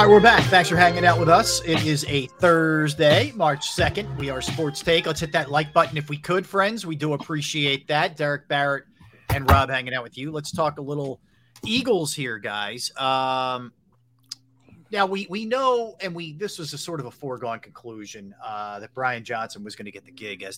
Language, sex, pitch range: English, male, 125-160 Hz